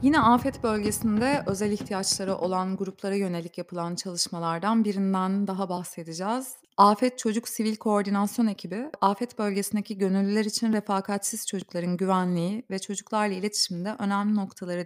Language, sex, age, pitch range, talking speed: Turkish, female, 30-49, 180-215 Hz, 120 wpm